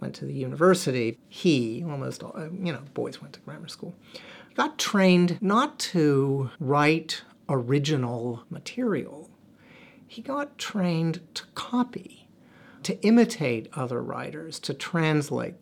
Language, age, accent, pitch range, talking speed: English, 50-69, American, 130-180 Hz, 120 wpm